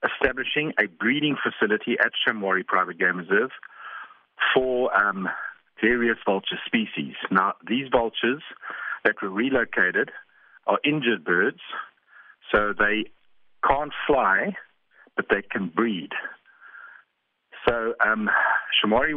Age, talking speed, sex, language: 50-69, 105 wpm, male, English